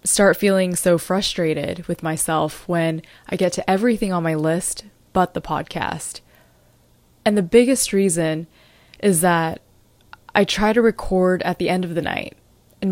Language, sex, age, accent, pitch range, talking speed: English, female, 20-39, American, 170-205 Hz, 160 wpm